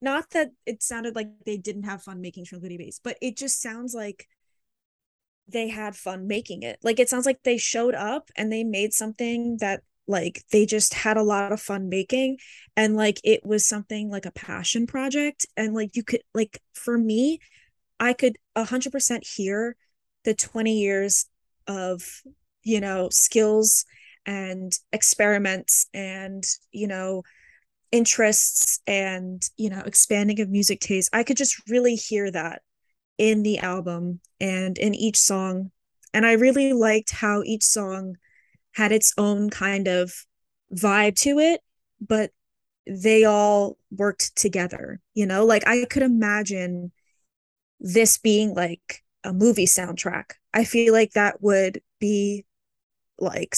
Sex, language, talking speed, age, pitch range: female, English, 150 wpm, 10-29, 195-230 Hz